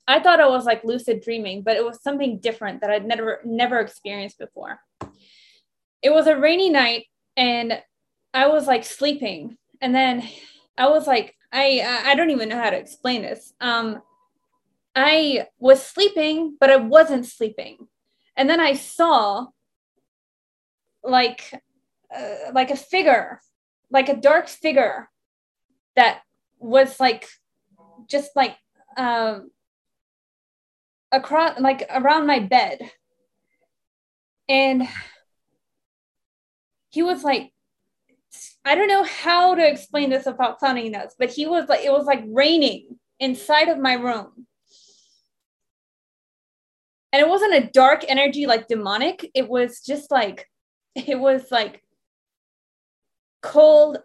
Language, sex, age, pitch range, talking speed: English, female, 10-29, 240-295 Hz, 130 wpm